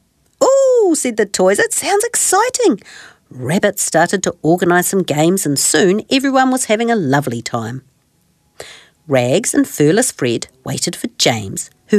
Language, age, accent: English, 50-69, Australian